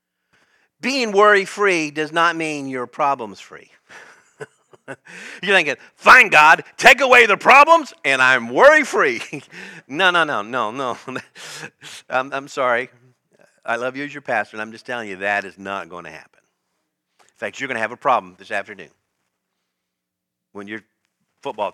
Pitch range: 125-180 Hz